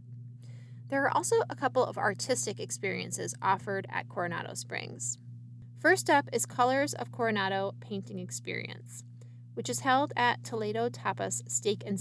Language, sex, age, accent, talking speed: English, female, 20-39, American, 140 wpm